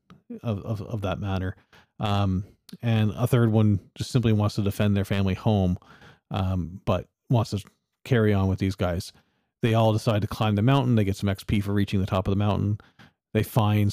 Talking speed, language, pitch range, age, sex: 200 wpm, English, 95-110 Hz, 40-59, male